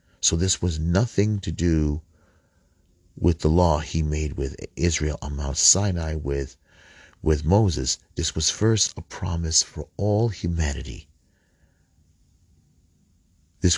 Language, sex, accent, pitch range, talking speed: English, male, American, 75-90 Hz, 120 wpm